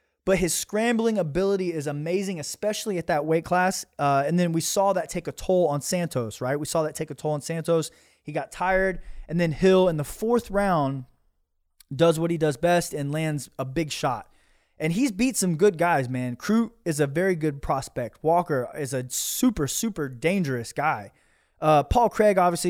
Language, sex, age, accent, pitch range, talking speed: English, male, 20-39, American, 150-185 Hz, 200 wpm